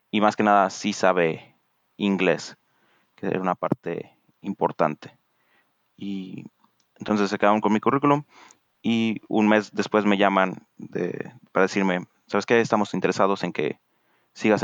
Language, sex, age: Spanish, male, 30-49